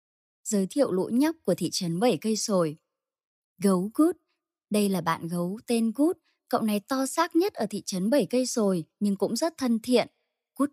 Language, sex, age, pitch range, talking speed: Vietnamese, male, 20-39, 195-275 Hz, 195 wpm